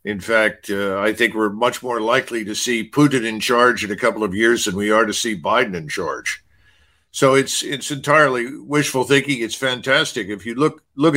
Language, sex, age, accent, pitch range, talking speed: English, male, 50-69, American, 115-145 Hz, 210 wpm